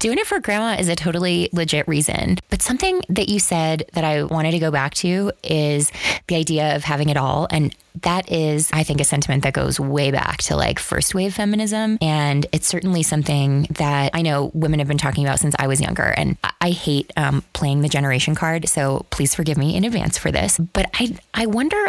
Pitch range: 145-175 Hz